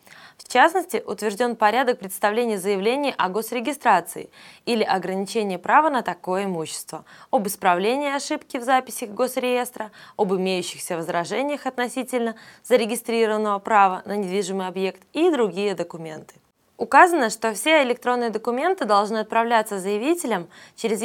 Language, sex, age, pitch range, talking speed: Russian, female, 20-39, 195-250 Hz, 115 wpm